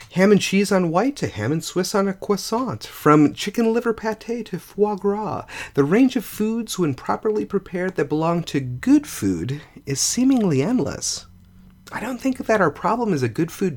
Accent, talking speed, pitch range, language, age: American, 190 wpm, 145-240 Hz, English, 40-59